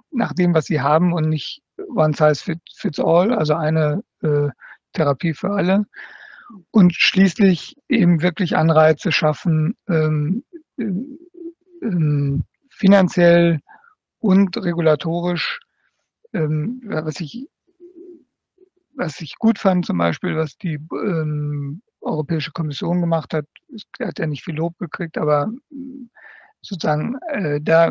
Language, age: German, 60-79